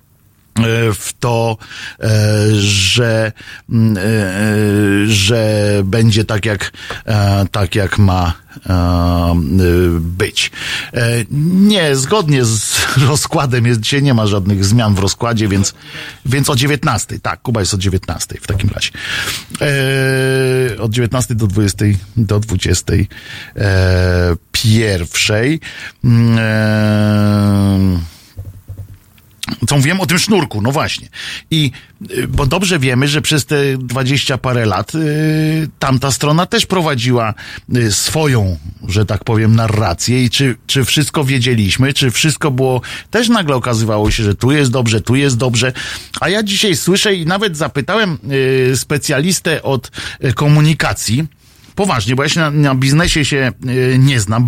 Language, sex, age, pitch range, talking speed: Polish, male, 50-69, 105-135 Hz, 120 wpm